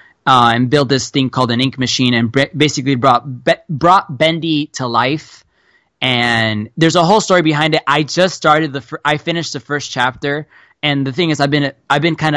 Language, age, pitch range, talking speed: English, 20-39, 125-160 Hz, 215 wpm